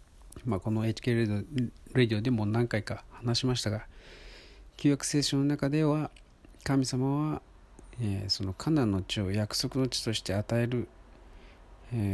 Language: Japanese